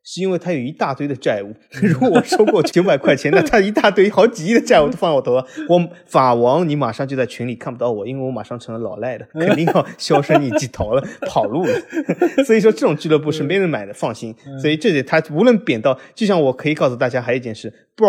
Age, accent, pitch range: 20-39, native, 120-175 Hz